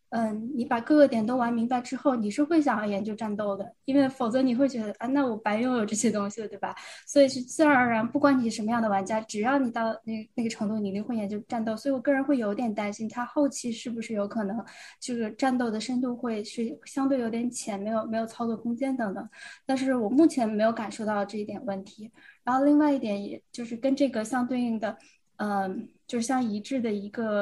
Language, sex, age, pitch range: Chinese, female, 10-29, 210-265 Hz